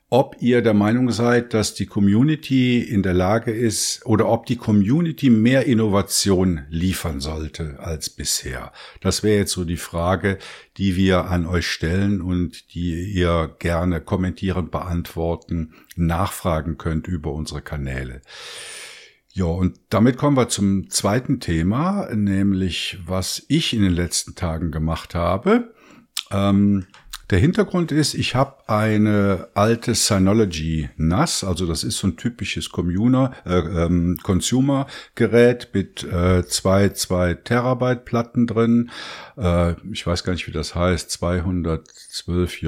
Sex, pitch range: male, 85-115 Hz